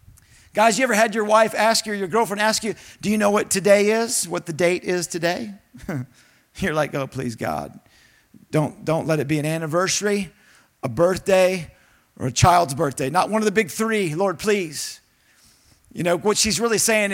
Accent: American